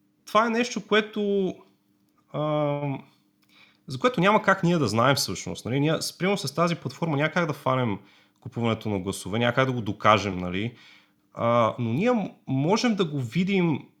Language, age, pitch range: Bulgarian, 30-49, 105-150 Hz